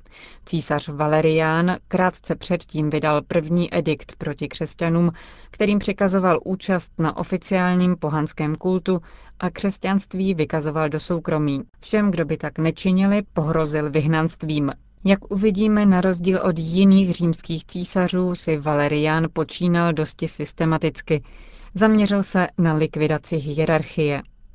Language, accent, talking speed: Czech, native, 110 wpm